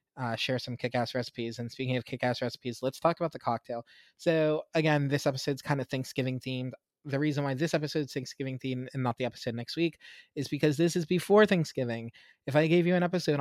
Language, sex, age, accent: English, male, 20-39, American